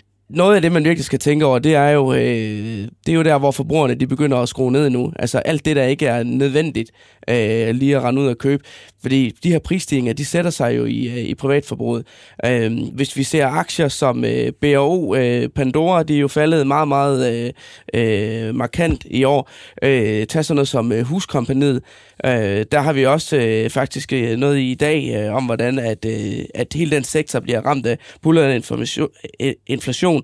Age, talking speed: 20-39, 180 wpm